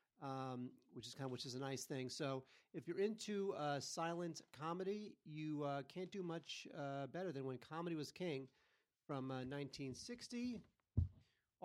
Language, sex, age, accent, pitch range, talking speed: English, male, 40-59, American, 135-170 Hz, 165 wpm